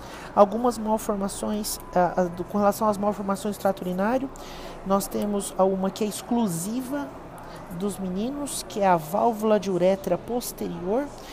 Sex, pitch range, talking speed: male, 190-230 Hz, 125 wpm